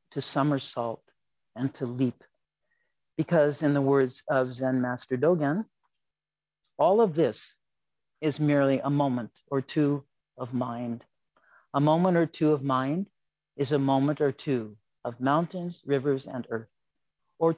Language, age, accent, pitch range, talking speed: English, 50-69, American, 130-170 Hz, 140 wpm